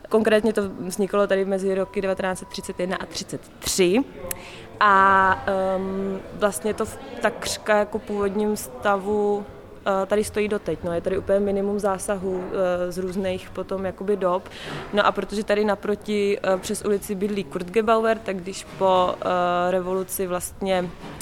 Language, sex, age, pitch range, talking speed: Czech, female, 20-39, 175-200 Hz, 140 wpm